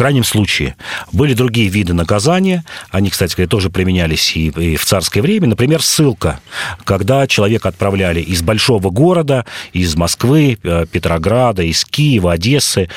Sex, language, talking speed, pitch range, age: male, Russian, 135 wpm, 95-130 Hz, 40-59